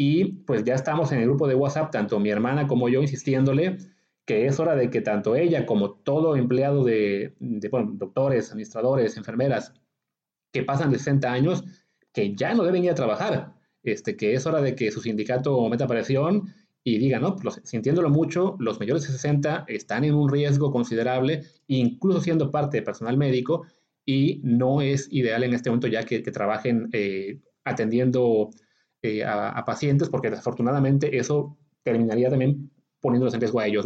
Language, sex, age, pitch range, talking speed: English, male, 30-49, 120-155 Hz, 170 wpm